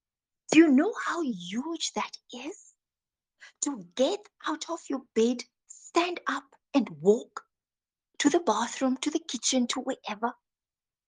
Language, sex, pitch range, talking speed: English, female, 210-305 Hz, 135 wpm